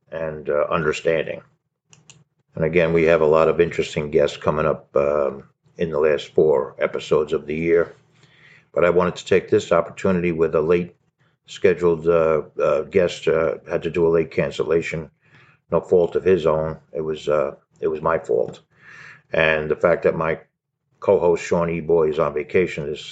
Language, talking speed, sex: English, 175 wpm, male